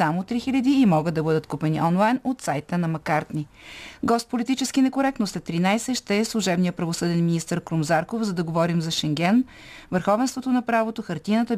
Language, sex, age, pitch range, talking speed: Bulgarian, female, 30-49, 170-225 Hz, 160 wpm